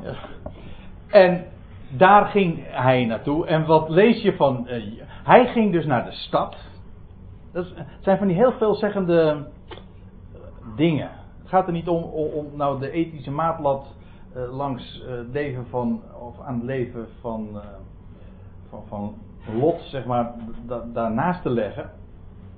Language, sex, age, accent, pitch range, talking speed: Dutch, male, 60-79, Dutch, 95-145 Hz, 145 wpm